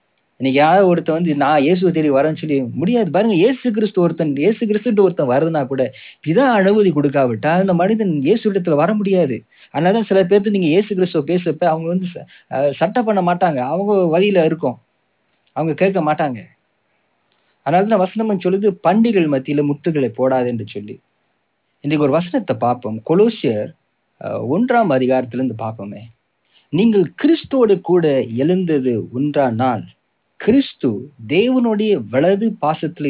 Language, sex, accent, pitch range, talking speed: English, male, Indian, 135-195 Hz, 140 wpm